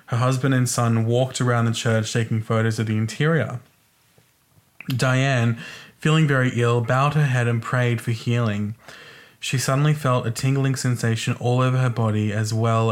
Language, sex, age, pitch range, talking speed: English, male, 20-39, 110-125 Hz, 165 wpm